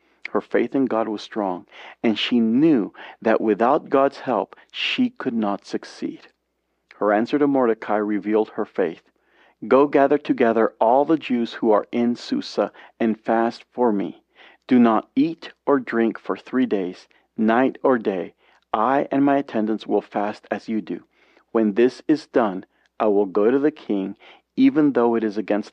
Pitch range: 110-145 Hz